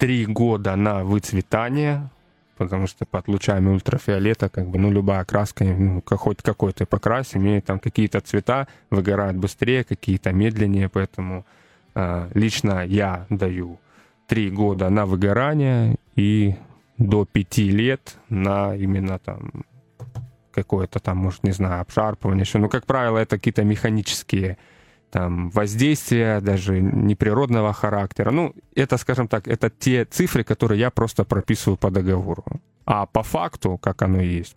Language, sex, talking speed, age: Russian, male, 130 wpm, 20-39